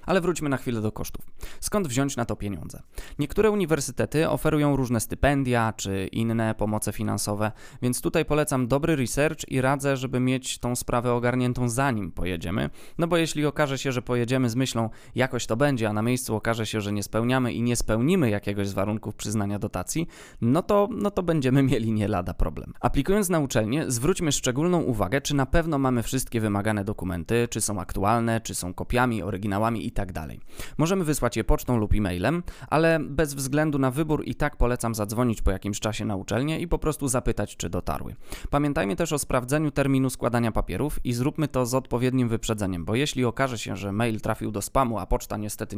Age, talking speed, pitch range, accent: 20-39, 190 wpm, 105-145 Hz, native